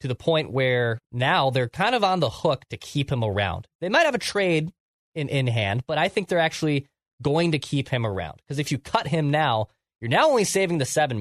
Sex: male